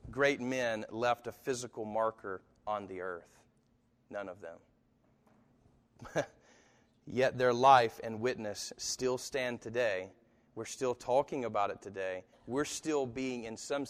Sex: male